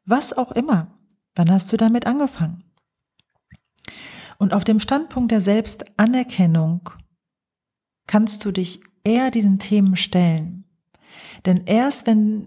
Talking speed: 115 wpm